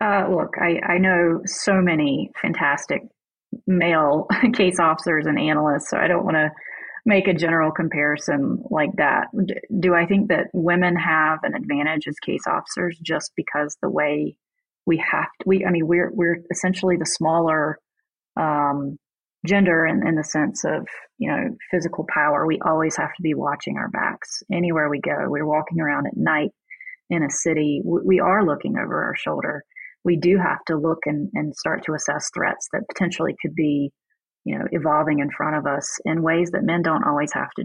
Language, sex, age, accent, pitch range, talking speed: English, female, 30-49, American, 155-190 Hz, 190 wpm